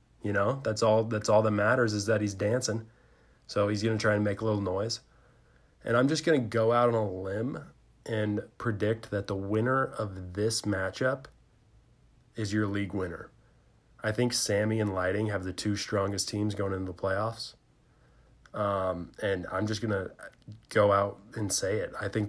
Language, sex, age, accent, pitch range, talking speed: English, male, 20-39, American, 100-115 Hz, 190 wpm